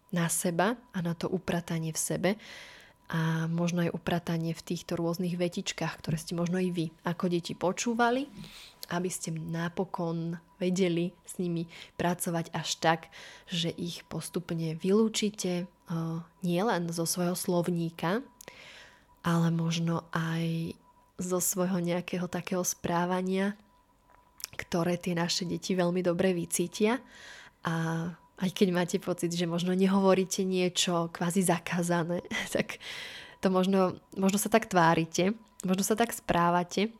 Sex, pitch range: female, 170-190 Hz